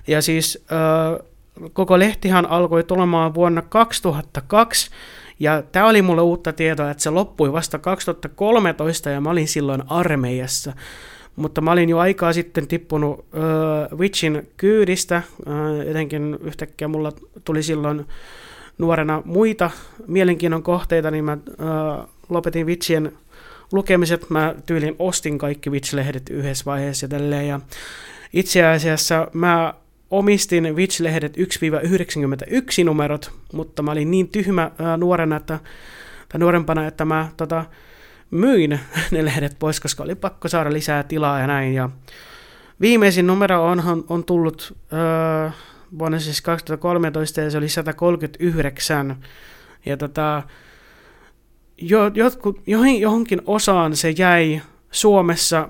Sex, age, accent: male, 30-49, native